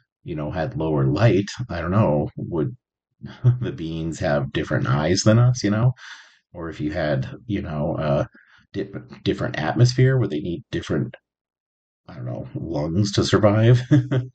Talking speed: 160 wpm